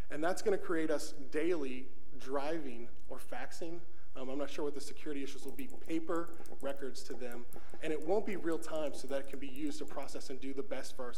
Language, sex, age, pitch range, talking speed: English, male, 20-39, 135-175 Hz, 235 wpm